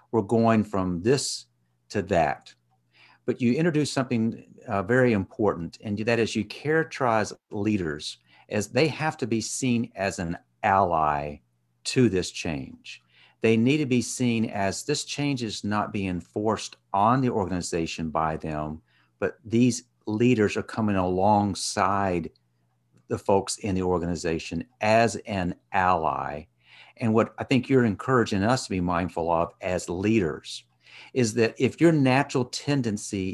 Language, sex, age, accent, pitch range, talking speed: English, male, 50-69, American, 85-125 Hz, 145 wpm